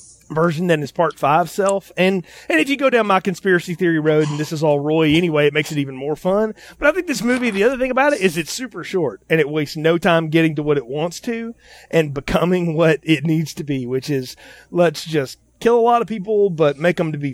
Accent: American